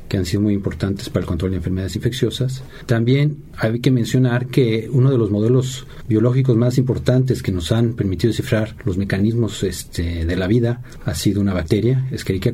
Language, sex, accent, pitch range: Spanish, male, Mexican, 105-130 Hz